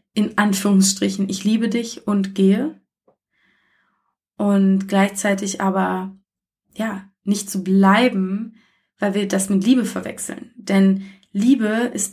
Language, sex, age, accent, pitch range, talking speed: German, female, 20-39, German, 195-210 Hz, 120 wpm